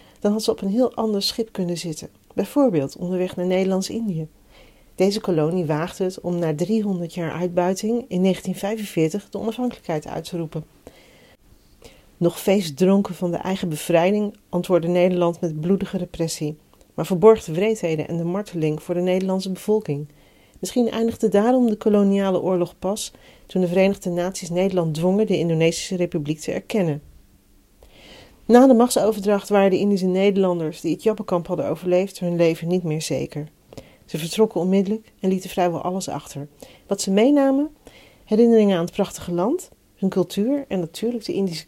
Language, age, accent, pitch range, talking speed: Dutch, 40-59, Dutch, 170-200 Hz, 155 wpm